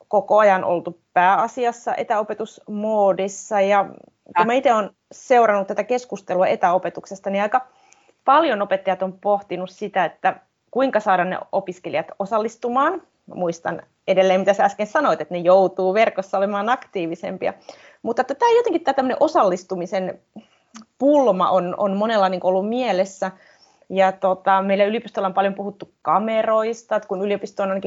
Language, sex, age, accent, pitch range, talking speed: Finnish, female, 30-49, native, 185-220 Hz, 140 wpm